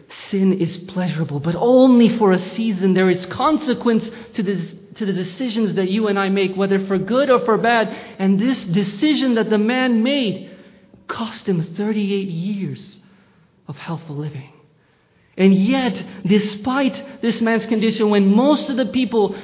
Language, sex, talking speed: English, male, 155 wpm